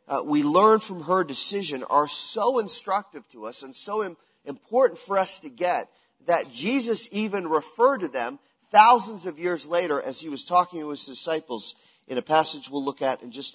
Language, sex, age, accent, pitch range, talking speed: English, male, 40-59, American, 145-210 Hz, 190 wpm